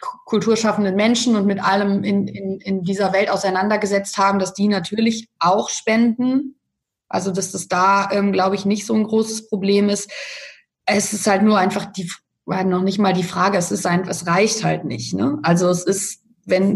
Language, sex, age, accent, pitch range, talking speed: German, female, 20-39, German, 185-220 Hz, 195 wpm